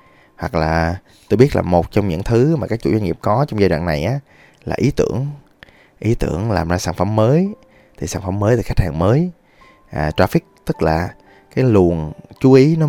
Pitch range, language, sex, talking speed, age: 85-120 Hz, Vietnamese, male, 215 wpm, 20-39